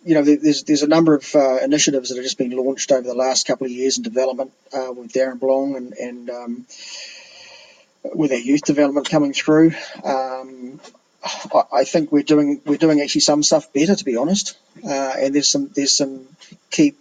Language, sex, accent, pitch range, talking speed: English, male, Australian, 130-150 Hz, 200 wpm